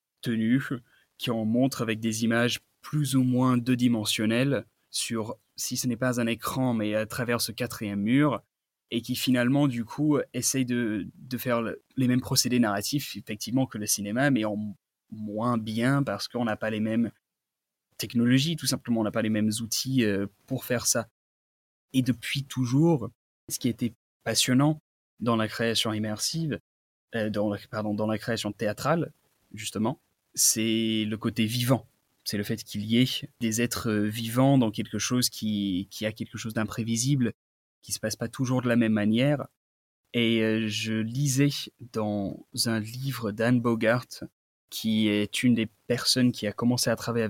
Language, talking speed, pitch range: French, 170 wpm, 105-125 Hz